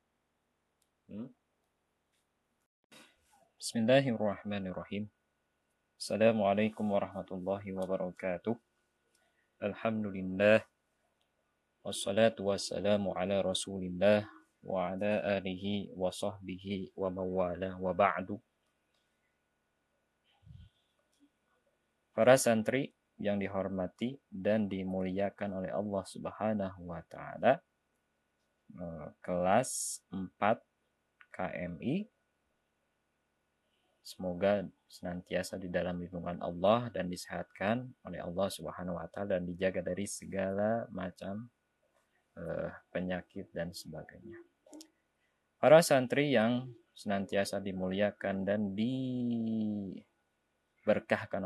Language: Indonesian